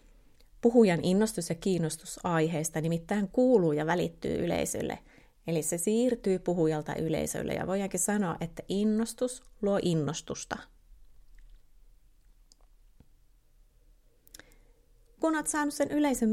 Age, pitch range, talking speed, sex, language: 30-49, 165-210 Hz, 100 wpm, female, Finnish